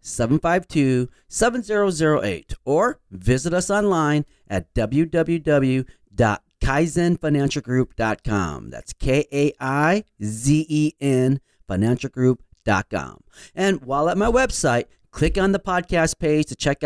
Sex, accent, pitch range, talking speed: male, American, 125-190 Hz, 100 wpm